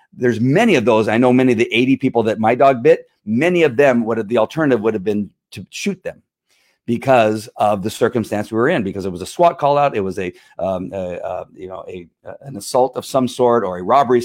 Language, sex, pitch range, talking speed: English, male, 110-145 Hz, 250 wpm